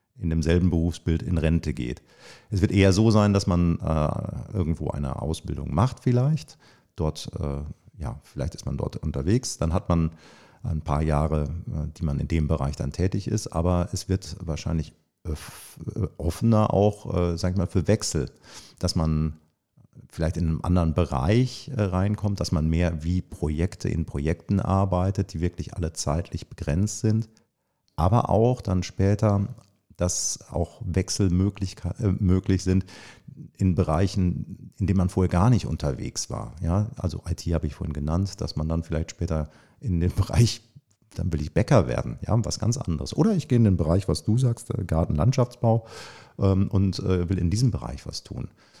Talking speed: 170 wpm